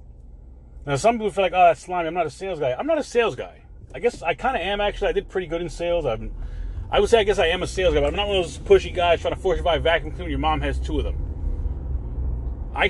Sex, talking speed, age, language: male, 305 wpm, 30-49, English